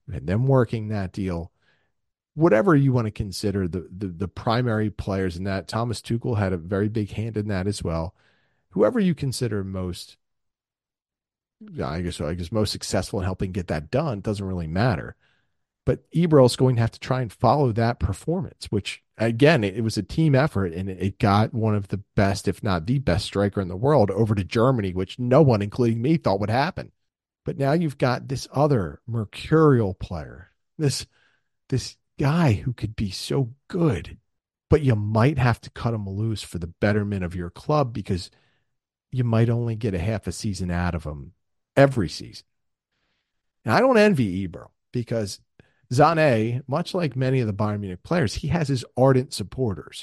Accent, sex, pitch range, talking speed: American, male, 95-130 Hz, 185 wpm